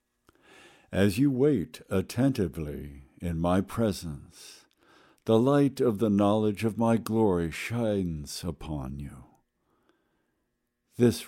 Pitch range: 80-115 Hz